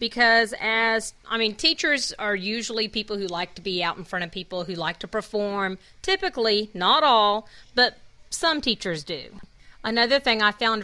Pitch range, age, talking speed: 195-245 Hz, 40-59, 175 wpm